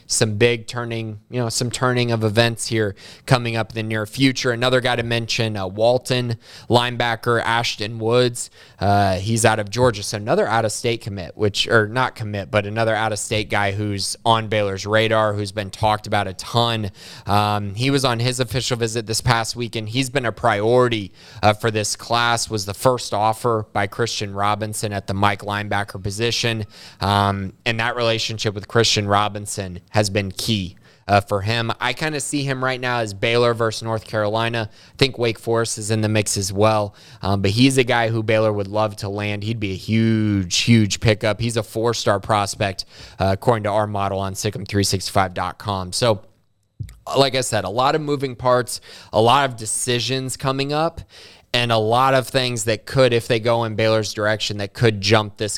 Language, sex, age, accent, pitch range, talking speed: English, male, 20-39, American, 105-120 Hz, 190 wpm